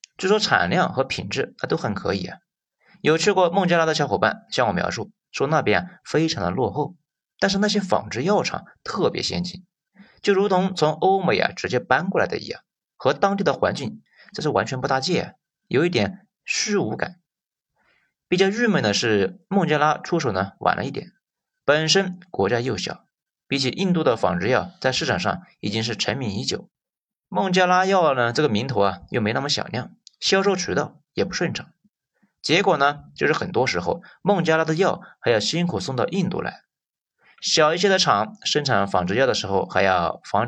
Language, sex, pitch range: Chinese, male, 130-190 Hz